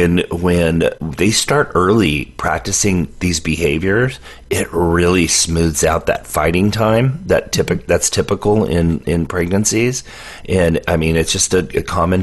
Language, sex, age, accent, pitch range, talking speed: English, male, 30-49, American, 85-105 Hz, 145 wpm